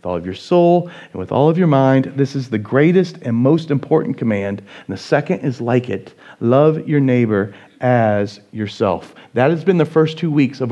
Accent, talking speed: American, 215 wpm